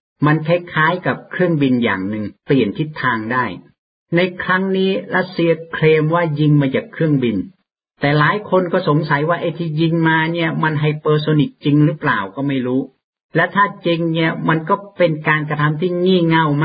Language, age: Thai, 60-79